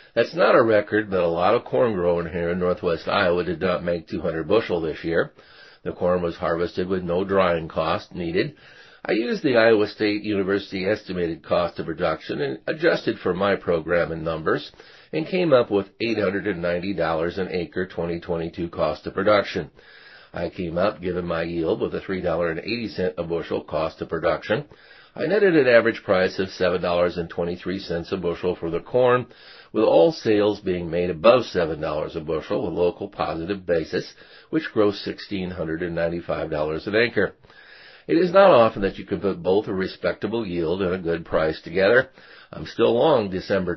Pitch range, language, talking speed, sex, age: 85-105 Hz, English, 165 wpm, male, 50-69